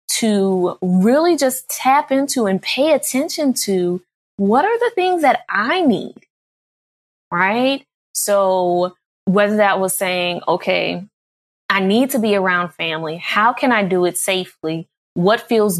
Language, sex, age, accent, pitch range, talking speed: English, female, 20-39, American, 180-245 Hz, 140 wpm